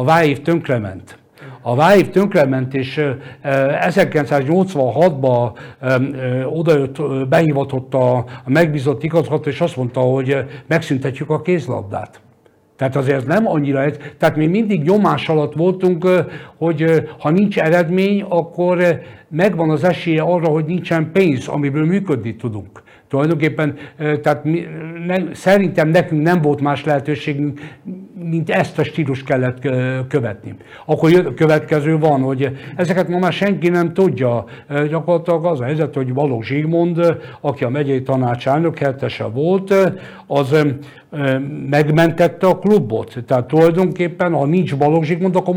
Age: 60-79